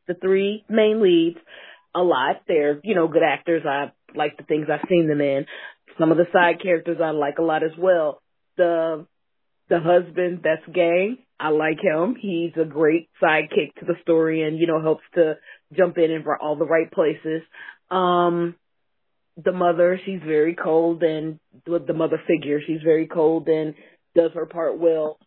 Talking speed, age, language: 185 wpm, 30-49, English